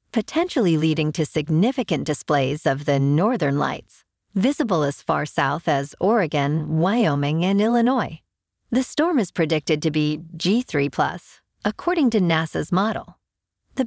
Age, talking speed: 40-59, 130 wpm